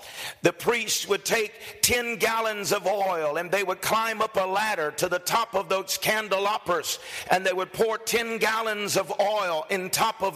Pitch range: 190-230 Hz